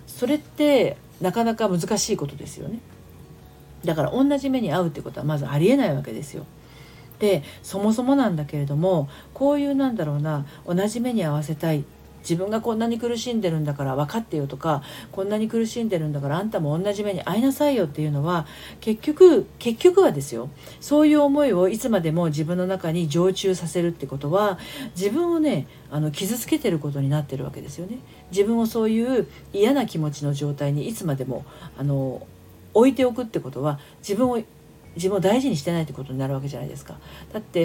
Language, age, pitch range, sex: Japanese, 40-59, 150-230 Hz, female